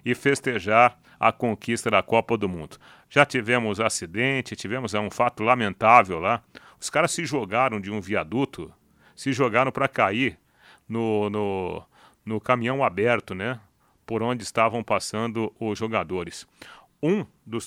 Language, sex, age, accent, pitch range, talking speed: Portuguese, male, 40-59, Brazilian, 110-135 Hz, 140 wpm